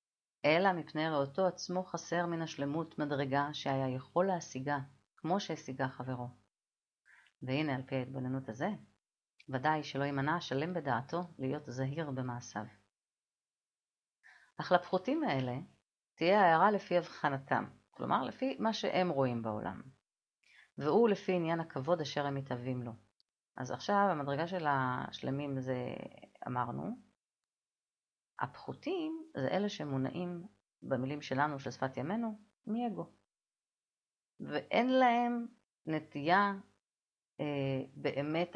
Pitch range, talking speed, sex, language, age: 130-180 Hz, 110 wpm, female, Hebrew, 30-49